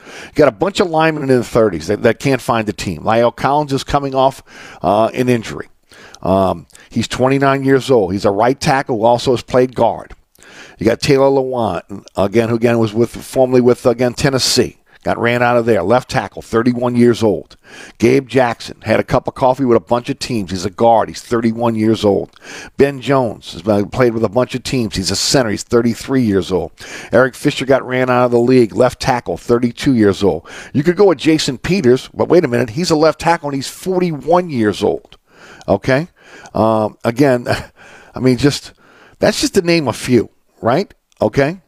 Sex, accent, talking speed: male, American, 205 wpm